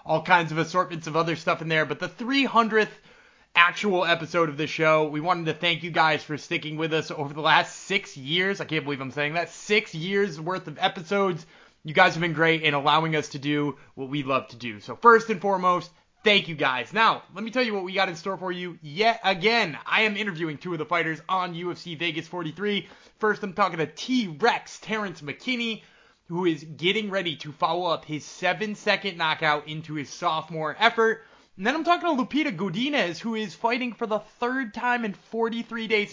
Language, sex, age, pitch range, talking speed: English, male, 20-39, 160-215 Hz, 215 wpm